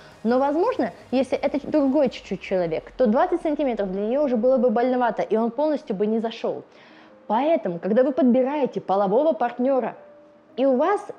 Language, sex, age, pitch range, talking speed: Russian, female, 20-39, 220-295 Hz, 165 wpm